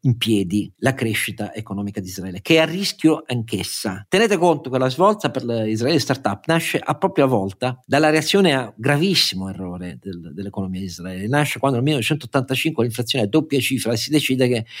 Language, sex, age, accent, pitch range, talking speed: Italian, male, 50-69, native, 105-135 Hz, 185 wpm